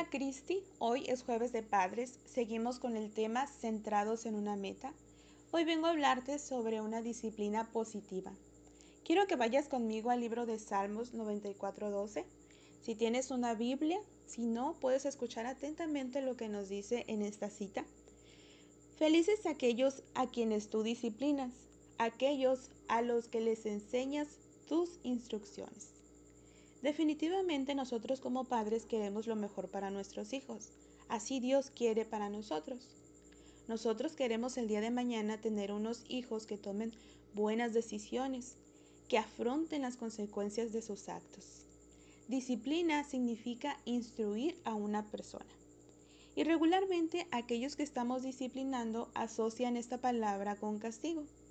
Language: Spanish